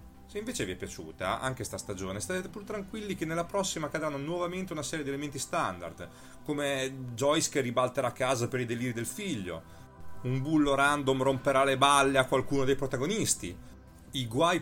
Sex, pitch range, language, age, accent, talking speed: male, 110-170 Hz, Italian, 30-49, native, 180 wpm